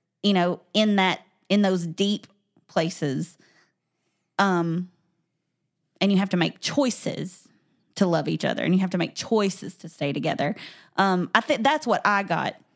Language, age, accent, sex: English, 20-39, American, female